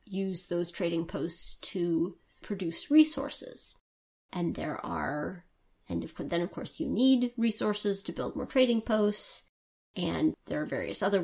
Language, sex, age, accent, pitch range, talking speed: English, female, 30-49, American, 165-205 Hz, 145 wpm